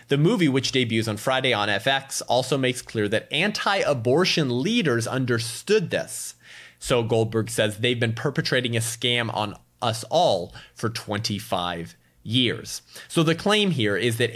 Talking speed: 150 wpm